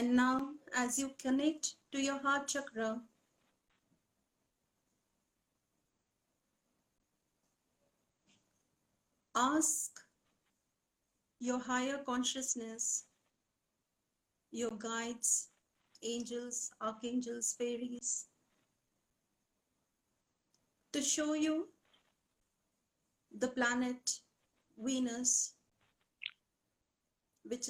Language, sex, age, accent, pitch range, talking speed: English, female, 50-69, Indian, 235-260 Hz, 55 wpm